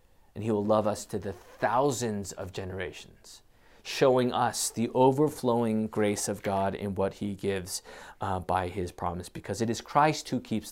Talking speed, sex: 175 wpm, male